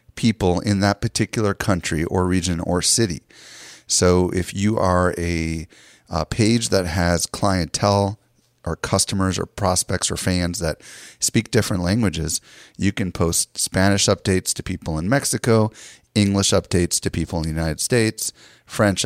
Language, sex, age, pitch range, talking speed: English, male, 30-49, 85-105 Hz, 150 wpm